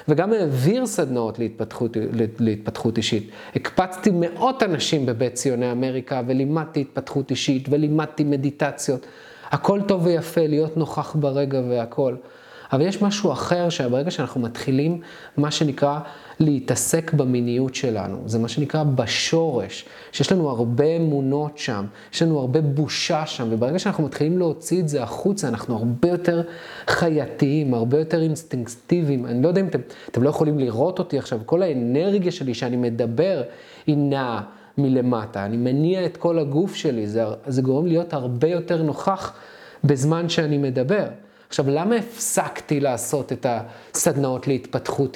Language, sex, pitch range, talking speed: Hebrew, male, 130-170 Hz, 140 wpm